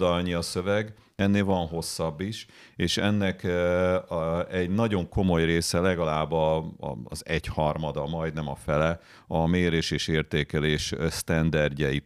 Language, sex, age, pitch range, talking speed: Hungarian, male, 40-59, 75-90 Hz, 120 wpm